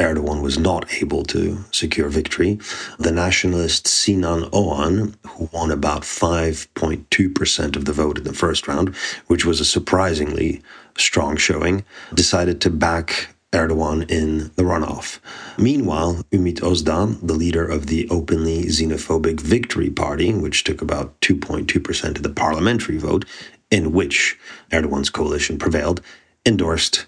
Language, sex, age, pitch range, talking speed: English, male, 40-59, 75-90 Hz, 135 wpm